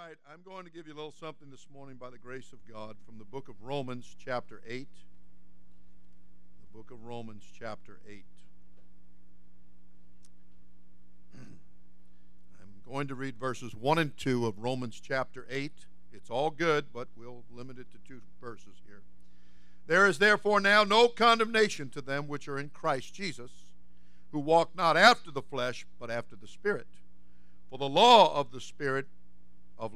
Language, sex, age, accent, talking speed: English, male, 60-79, American, 165 wpm